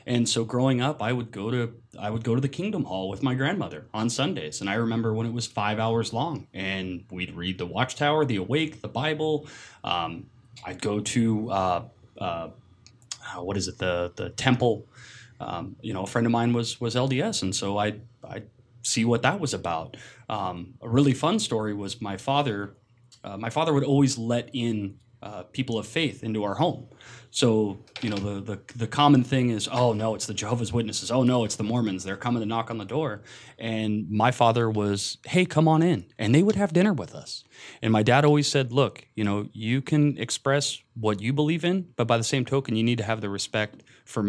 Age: 30-49